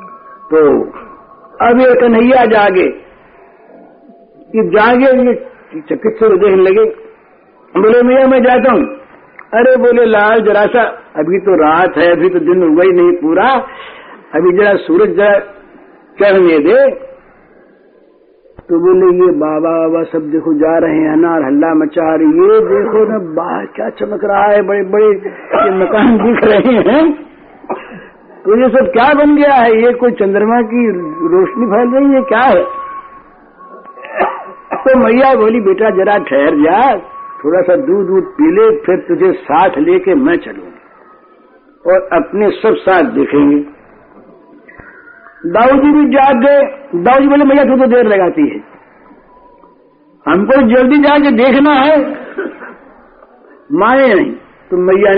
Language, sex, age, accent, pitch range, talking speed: Hindi, male, 60-79, native, 210-345 Hz, 130 wpm